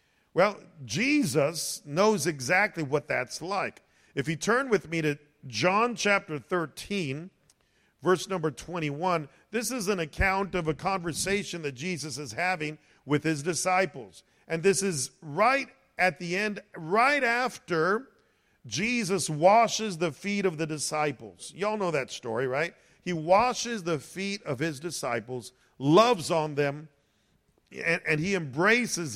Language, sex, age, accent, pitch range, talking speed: English, male, 50-69, American, 145-190 Hz, 140 wpm